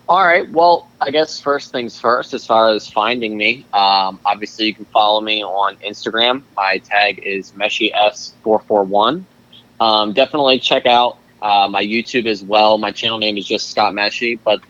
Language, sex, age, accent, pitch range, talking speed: English, male, 20-39, American, 95-115 Hz, 175 wpm